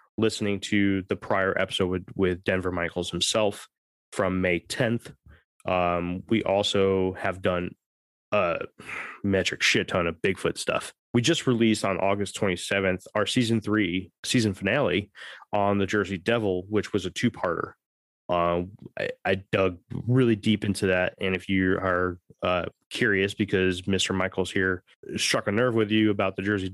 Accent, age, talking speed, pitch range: American, 20-39, 155 wpm, 95-110 Hz